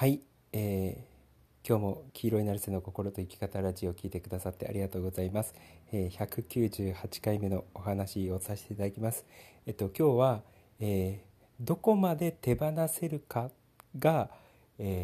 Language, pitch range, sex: Japanese, 95-120 Hz, male